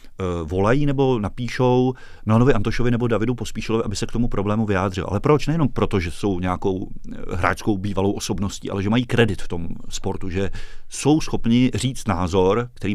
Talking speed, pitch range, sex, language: 170 wpm, 95-115 Hz, male, Czech